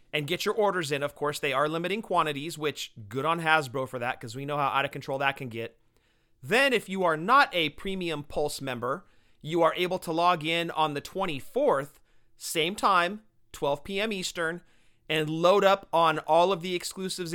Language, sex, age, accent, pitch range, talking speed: English, male, 40-59, American, 140-180 Hz, 200 wpm